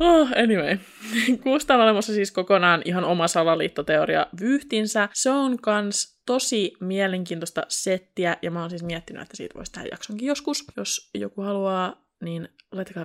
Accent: native